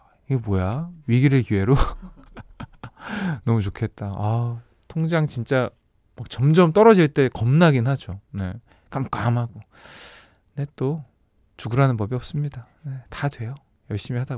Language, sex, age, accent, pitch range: Korean, male, 20-39, native, 110-155 Hz